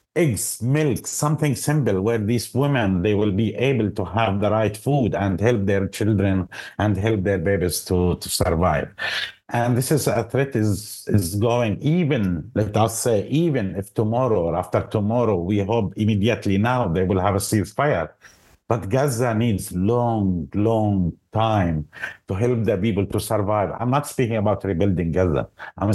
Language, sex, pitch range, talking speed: English, male, 100-120 Hz, 170 wpm